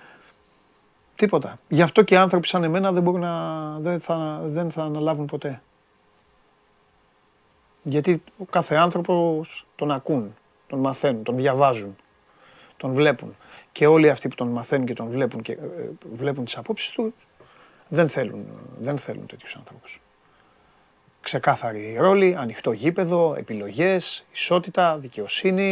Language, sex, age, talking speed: Greek, male, 30-49, 115 wpm